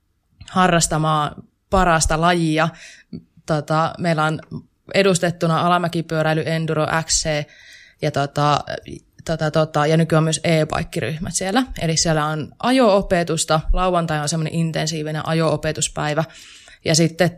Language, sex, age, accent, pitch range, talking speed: Finnish, female, 20-39, native, 150-170 Hz, 105 wpm